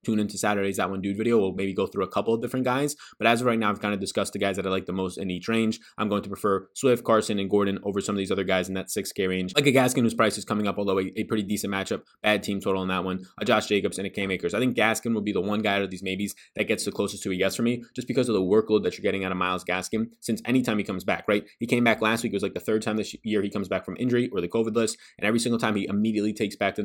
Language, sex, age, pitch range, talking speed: English, male, 20-39, 100-120 Hz, 335 wpm